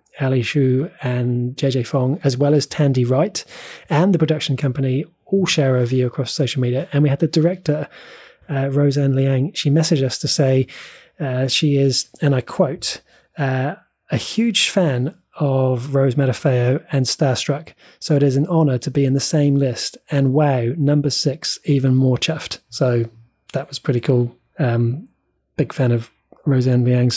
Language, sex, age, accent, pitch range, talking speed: English, male, 20-39, British, 130-155 Hz, 170 wpm